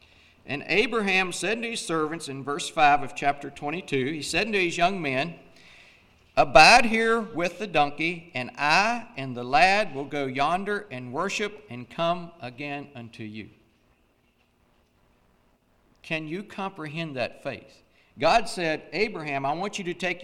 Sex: male